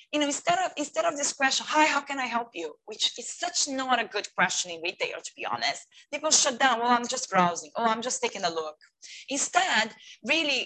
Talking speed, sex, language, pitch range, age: 230 wpm, female, English, 215-290 Hz, 20-39